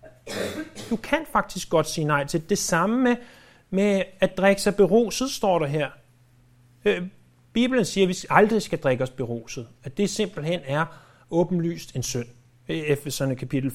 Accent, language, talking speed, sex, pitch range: native, Danish, 165 wpm, male, 130-205 Hz